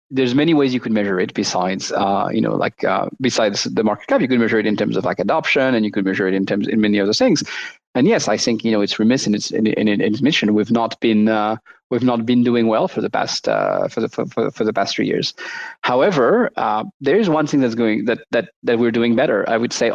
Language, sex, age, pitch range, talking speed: English, male, 30-49, 110-135 Hz, 275 wpm